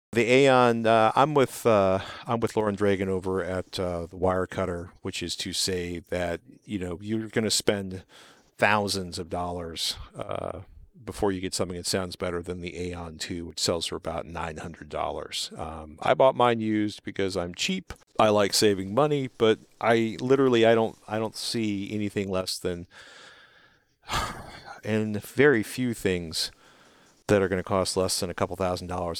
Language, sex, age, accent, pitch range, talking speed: English, male, 50-69, American, 90-110 Hz, 180 wpm